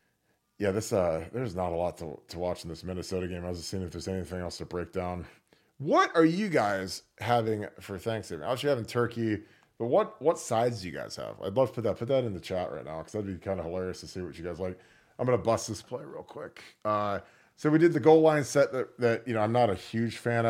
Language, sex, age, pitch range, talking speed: English, male, 30-49, 95-120 Hz, 280 wpm